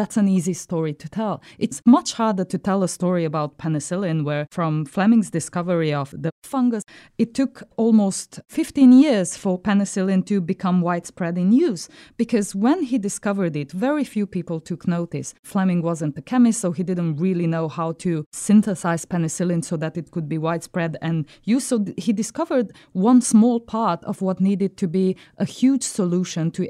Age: 20-39